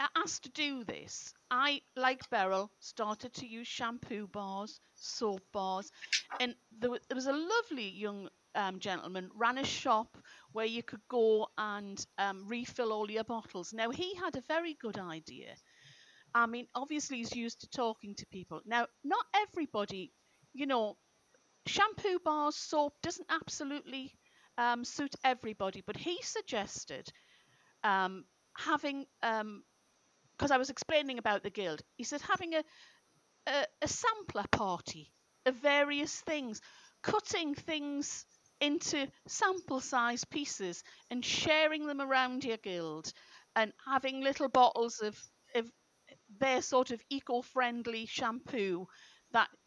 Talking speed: 135 wpm